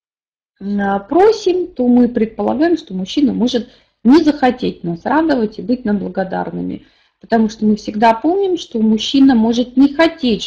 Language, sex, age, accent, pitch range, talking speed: Russian, female, 30-49, native, 205-270 Hz, 145 wpm